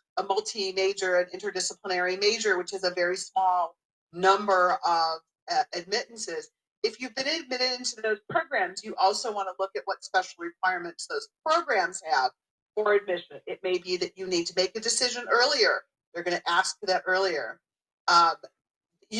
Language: English